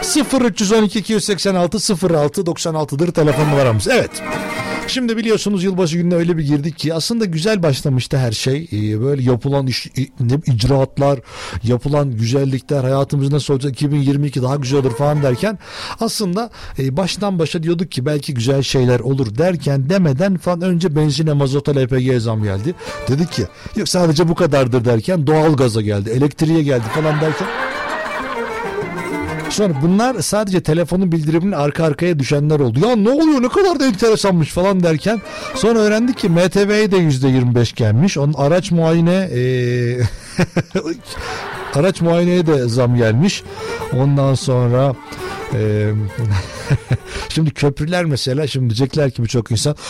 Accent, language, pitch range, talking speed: native, Turkish, 130-185 Hz, 135 wpm